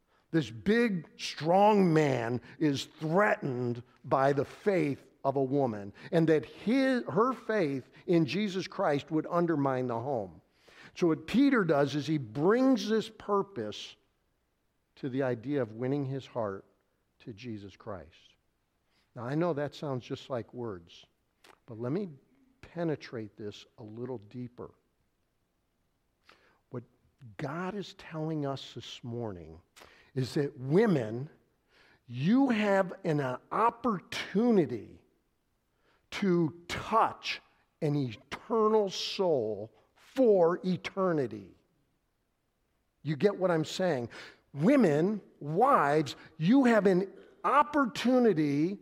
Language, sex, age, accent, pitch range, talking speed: English, male, 50-69, American, 130-195 Hz, 110 wpm